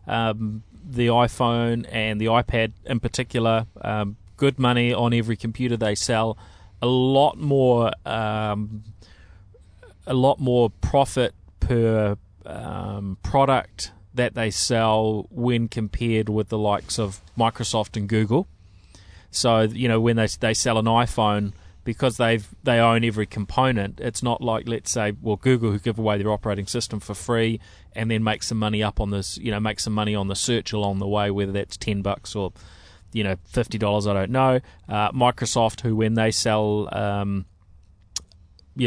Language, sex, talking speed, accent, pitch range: English, male, 165 wpm, Australian, 100-120 Hz